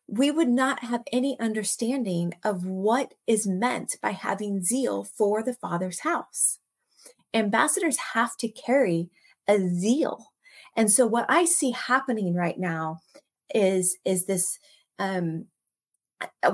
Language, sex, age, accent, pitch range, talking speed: English, female, 30-49, American, 185-245 Hz, 125 wpm